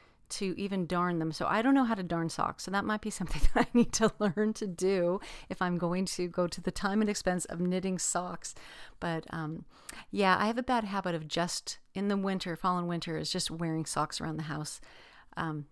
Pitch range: 165-220 Hz